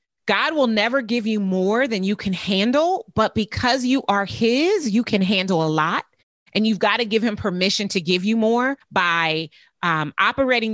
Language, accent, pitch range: English, American, 170-225 Hz